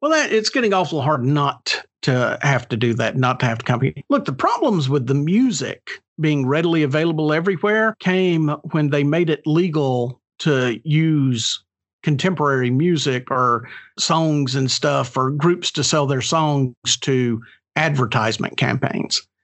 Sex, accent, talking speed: male, American, 155 wpm